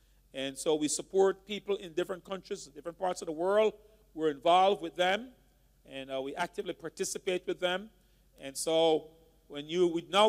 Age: 40-59